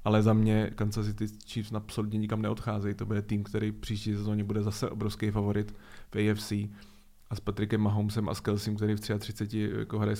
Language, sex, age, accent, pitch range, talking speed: Czech, male, 20-39, native, 105-110 Hz, 195 wpm